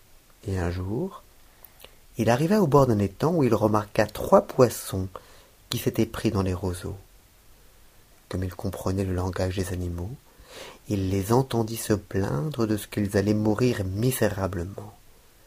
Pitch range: 100-155 Hz